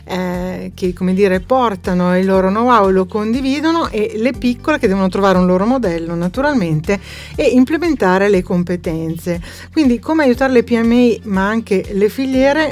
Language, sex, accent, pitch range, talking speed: Italian, female, native, 185-230 Hz, 160 wpm